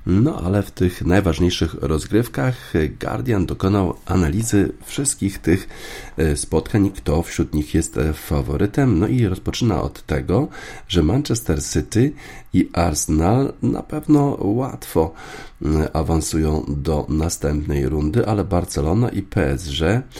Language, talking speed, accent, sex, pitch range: Polish, 115 wpm, native, male, 75-100 Hz